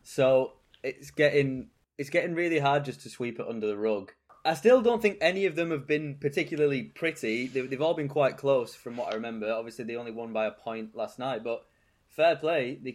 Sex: male